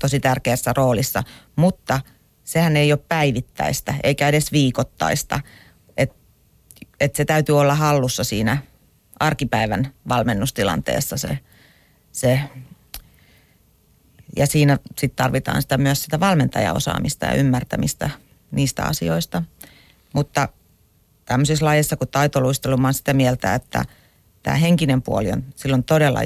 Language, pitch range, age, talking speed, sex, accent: Finnish, 125-145 Hz, 40-59, 110 wpm, female, native